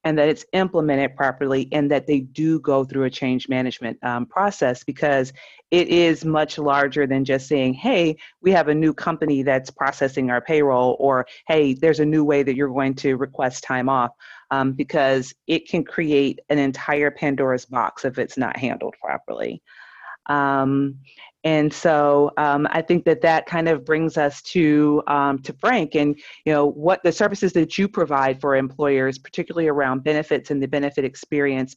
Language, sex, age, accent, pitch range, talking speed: English, female, 30-49, American, 135-160 Hz, 180 wpm